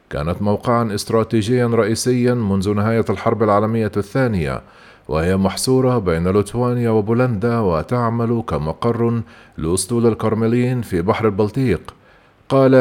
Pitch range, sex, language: 110-120 Hz, male, Arabic